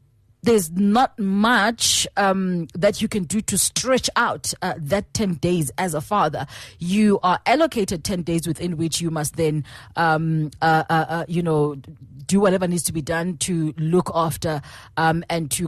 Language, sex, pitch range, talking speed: English, female, 160-240 Hz, 175 wpm